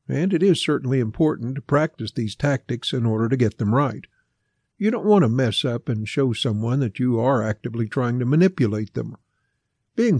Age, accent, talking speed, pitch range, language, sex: 60-79, American, 195 wpm, 115-150 Hz, English, male